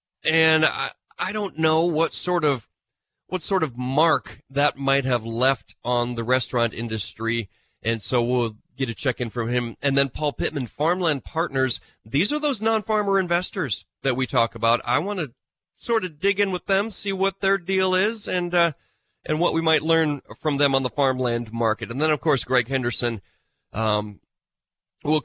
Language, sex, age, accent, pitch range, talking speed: English, male, 30-49, American, 120-165 Hz, 190 wpm